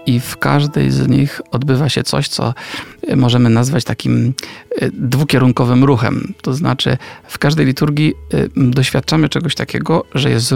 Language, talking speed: Polish, 135 wpm